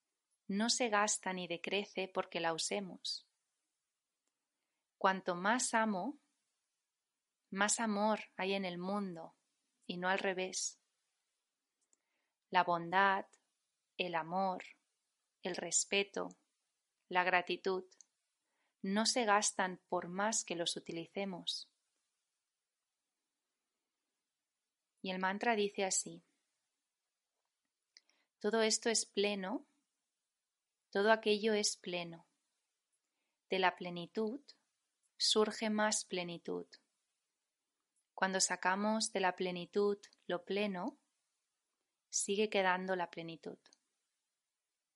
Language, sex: English, female